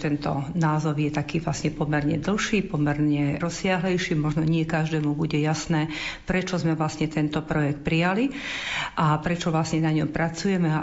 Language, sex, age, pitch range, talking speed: Slovak, female, 50-69, 155-180 Hz, 150 wpm